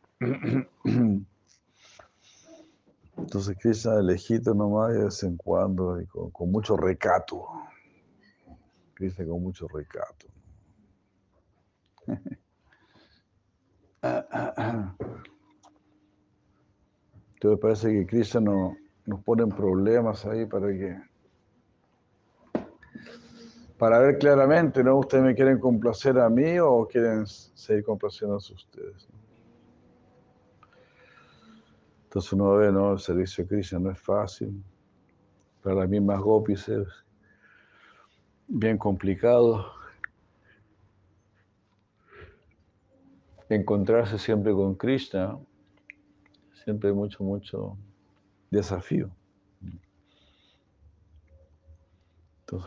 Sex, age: male, 60-79